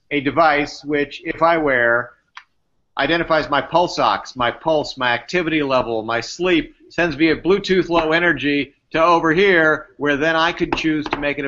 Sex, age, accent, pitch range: male, 50-69, American, 130-170 Hz